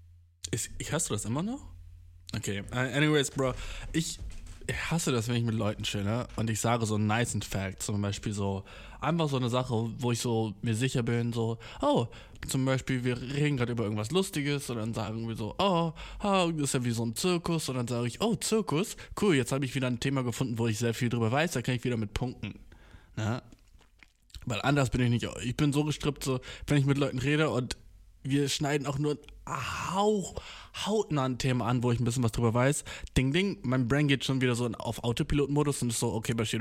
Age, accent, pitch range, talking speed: 20-39, German, 110-145 Hz, 225 wpm